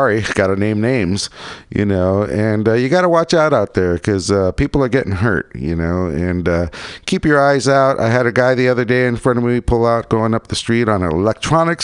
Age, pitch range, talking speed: 50-69, 95-135 Hz, 250 wpm